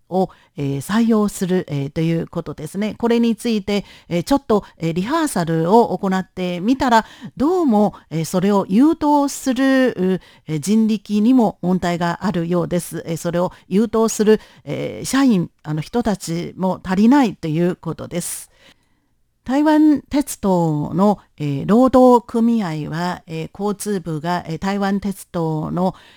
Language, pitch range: Russian, 170-220 Hz